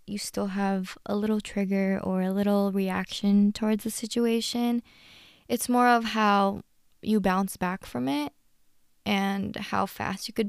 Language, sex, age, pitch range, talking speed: English, female, 20-39, 185-220 Hz, 155 wpm